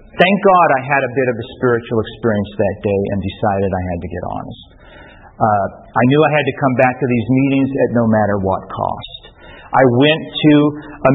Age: 40-59